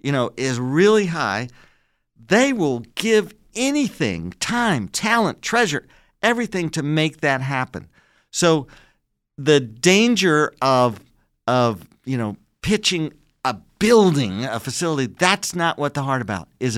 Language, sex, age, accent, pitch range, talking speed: English, male, 50-69, American, 115-170 Hz, 130 wpm